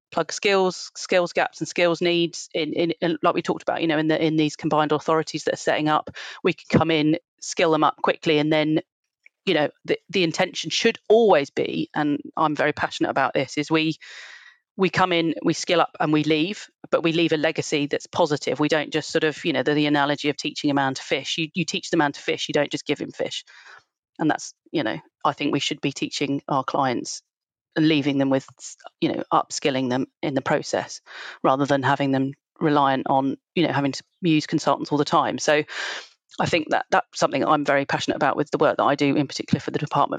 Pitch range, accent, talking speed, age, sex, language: 150-170 Hz, British, 235 wpm, 30-49, female, English